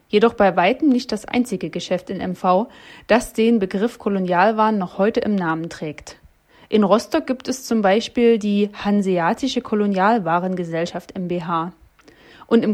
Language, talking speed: German, 140 wpm